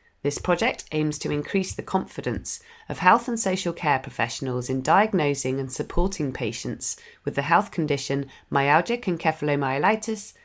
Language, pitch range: English, 140-185 Hz